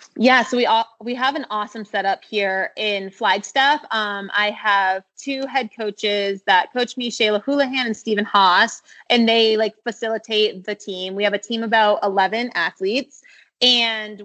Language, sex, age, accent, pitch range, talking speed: English, female, 20-39, American, 190-235 Hz, 170 wpm